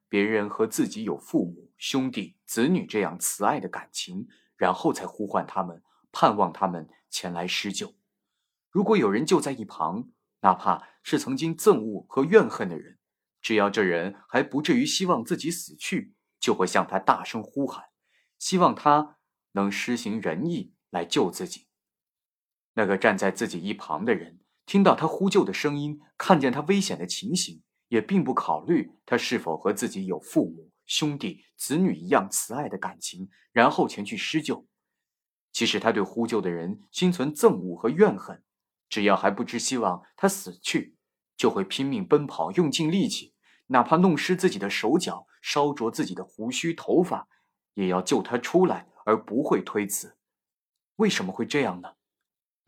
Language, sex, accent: Chinese, male, native